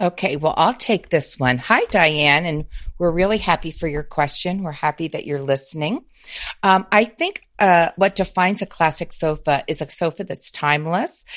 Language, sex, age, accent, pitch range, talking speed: English, female, 40-59, American, 150-180 Hz, 180 wpm